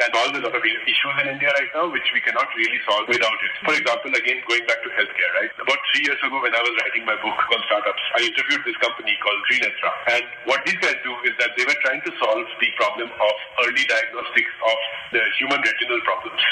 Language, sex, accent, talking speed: English, male, Indian, 235 wpm